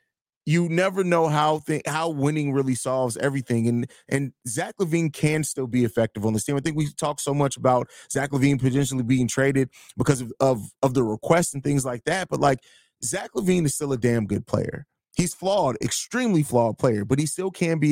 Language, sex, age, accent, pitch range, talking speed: English, male, 30-49, American, 130-160 Hz, 210 wpm